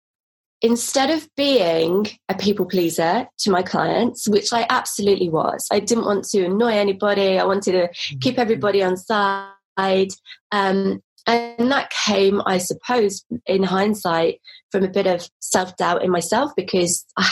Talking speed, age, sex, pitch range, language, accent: 155 wpm, 20-39, female, 195-240 Hz, English, British